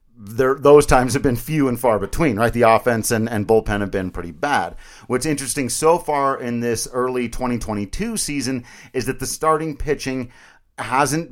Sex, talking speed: male, 175 wpm